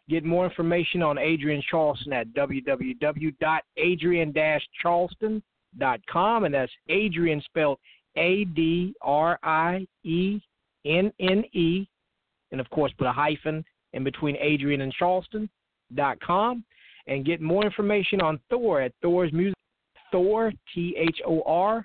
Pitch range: 150-190 Hz